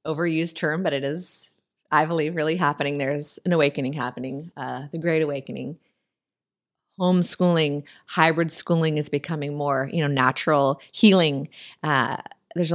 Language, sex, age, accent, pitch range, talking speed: English, female, 30-49, American, 145-195 Hz, 135 wpm